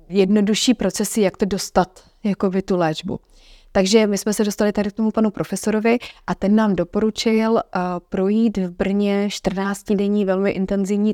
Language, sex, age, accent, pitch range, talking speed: Czech, female, 20-39, native, 185-210 Hz, 170 wpm